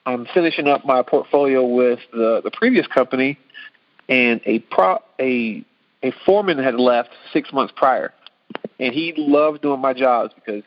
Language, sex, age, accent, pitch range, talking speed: English, male, 40-59, American, 115-145 Hz, 155 wpm